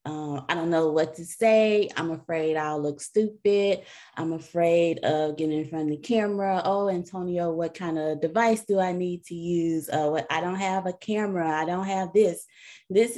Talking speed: 200 wpm